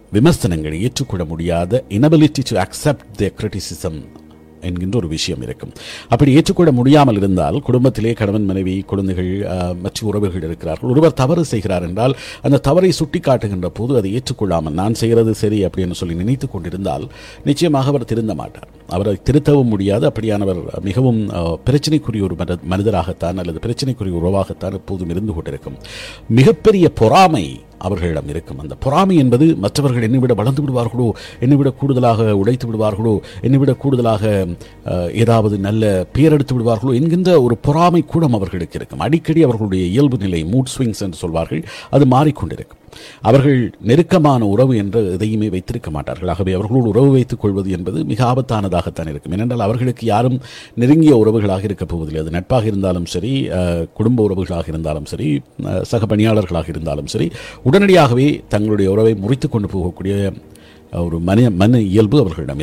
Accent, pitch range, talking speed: native, 90-130 Hz, 135 wpm